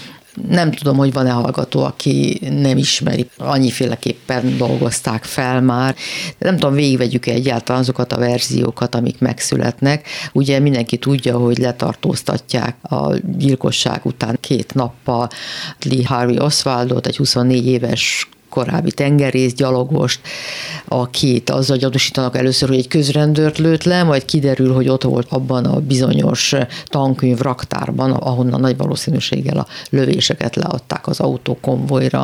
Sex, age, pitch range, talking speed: female, 50-69, 125-165 Hz, 125 wpm